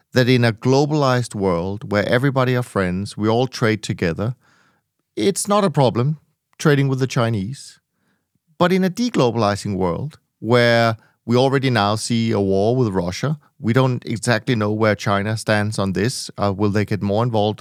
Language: English